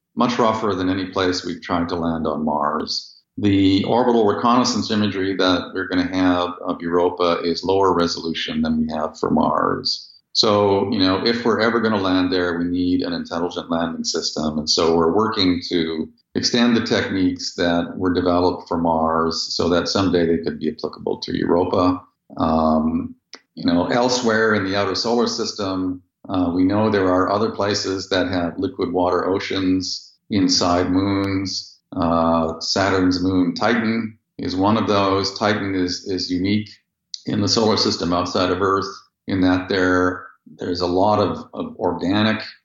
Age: 50-69